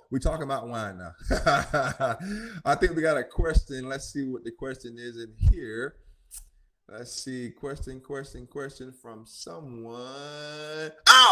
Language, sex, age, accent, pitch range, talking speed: English, male, 20-39, American, 105-150 Hz, 140 wpm